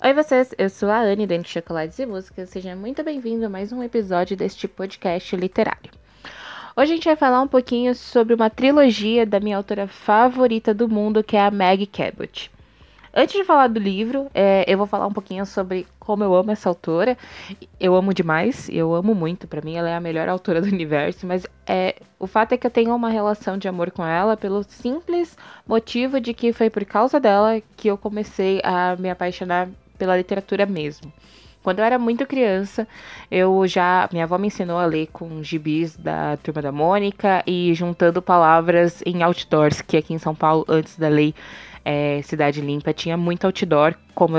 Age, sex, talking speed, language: 10-29, female, 195 wpm, Portuguese